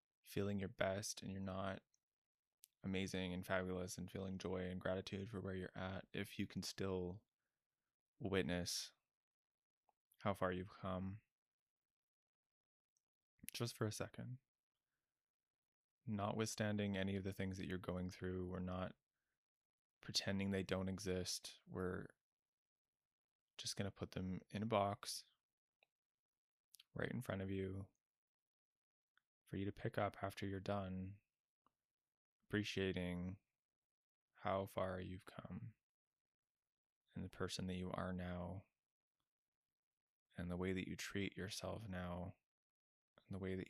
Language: English